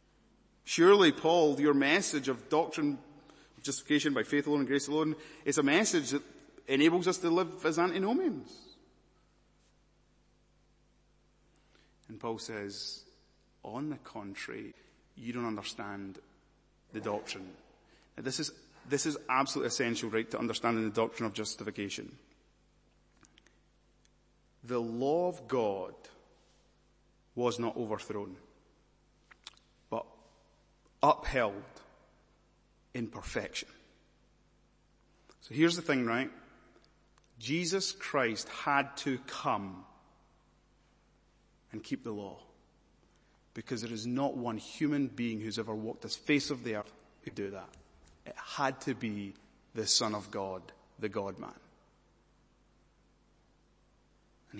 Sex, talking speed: male, 110 wpm